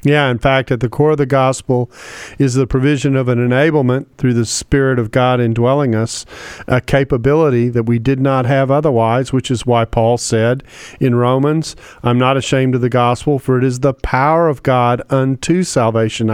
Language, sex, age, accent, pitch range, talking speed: English, male, 40-59, American, 120-145 Hz, 190 wpm